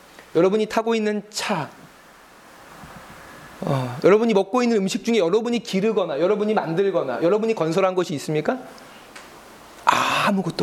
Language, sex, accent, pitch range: Korean, male, native, 155-235 Hz